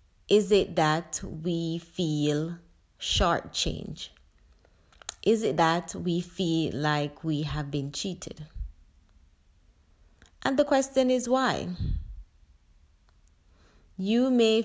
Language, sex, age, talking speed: English, female, 30-49, 100 wpm